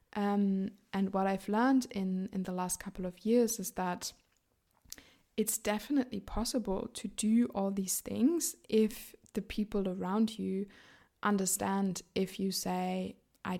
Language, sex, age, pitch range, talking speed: English, female, 20-39, 190-215 Hz, 140 wpm